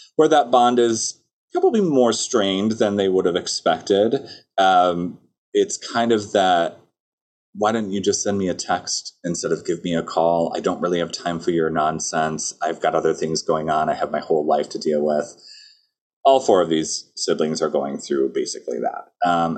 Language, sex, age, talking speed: English, male, 30-49, 195 wpm